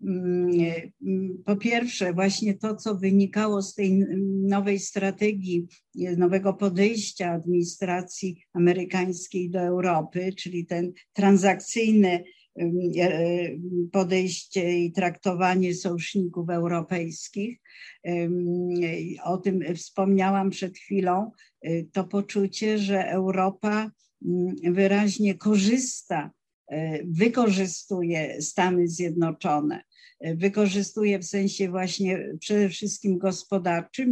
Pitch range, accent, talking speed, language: 175-195 Hz, native, 80 wpm, Polish